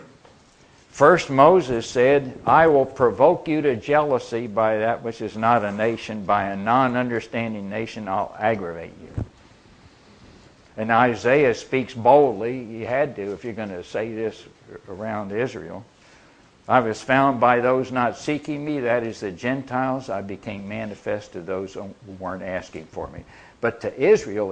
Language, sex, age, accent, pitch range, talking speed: English, male, 60-79, American, 105-140 Hz, 155 wpm